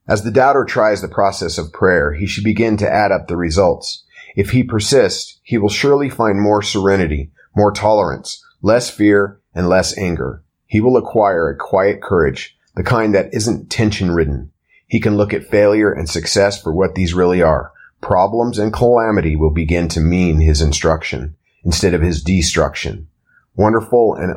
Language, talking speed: English, 170 wpm